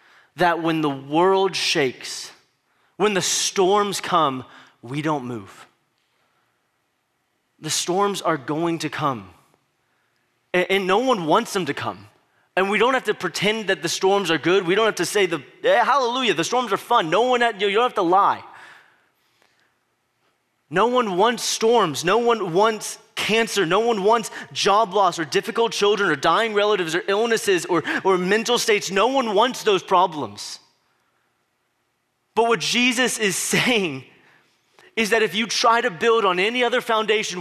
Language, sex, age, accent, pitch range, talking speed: English, male, 20-39, American, 180-230 Hz, 165 wpm